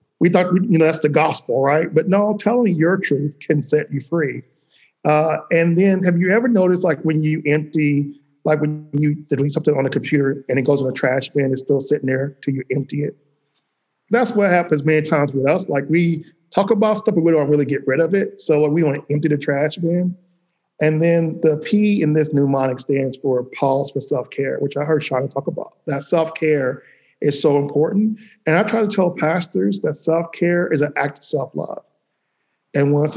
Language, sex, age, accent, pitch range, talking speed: English, male, 40-59, American, 145-180 Hz, 220 wpm